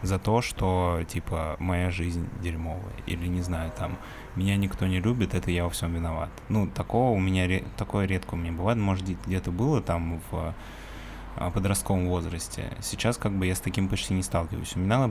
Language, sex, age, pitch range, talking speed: Russian, male, 20-39, 90-105 Hz, 185 wpm